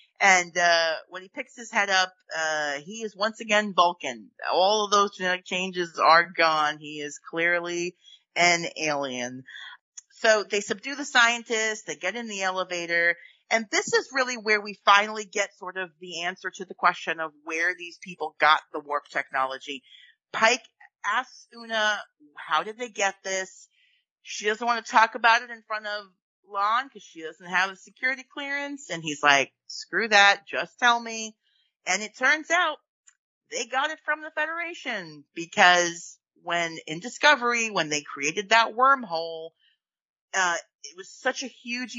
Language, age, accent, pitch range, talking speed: English, 40-59, American, 170-235 Hz, 170 wpm